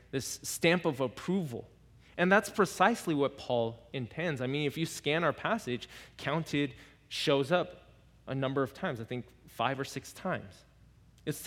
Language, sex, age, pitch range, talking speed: English, male, 20-39, 125-175 Hz, 160 wpm